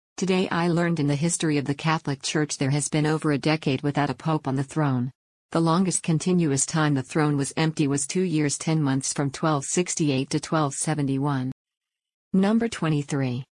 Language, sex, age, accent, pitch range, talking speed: English, female, 50-69, American, 140-165 Hz, 180 wpm